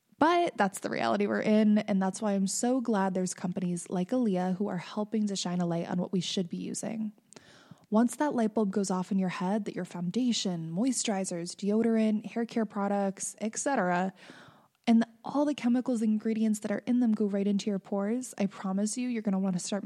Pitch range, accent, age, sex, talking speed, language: 185-220 Hz, American, 20-39, female, 220 wpm, English